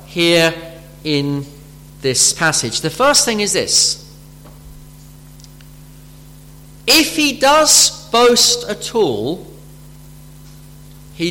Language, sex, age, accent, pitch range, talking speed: English, male, 40-59, British, 140-170 Hz, 85 wpm